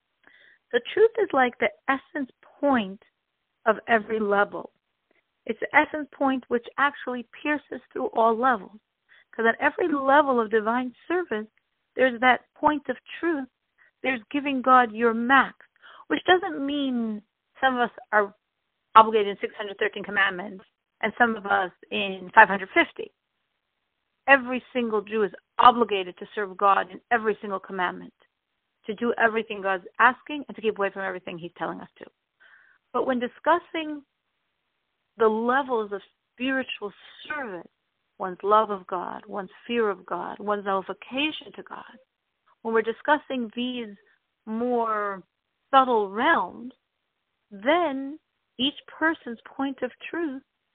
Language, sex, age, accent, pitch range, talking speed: English, female, 50-69, American, 210-275 Hz, 135 wpm